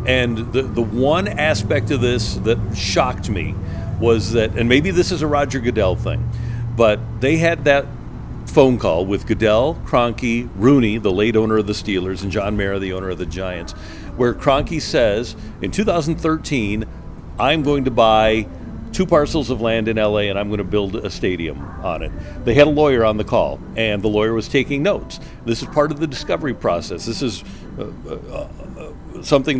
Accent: American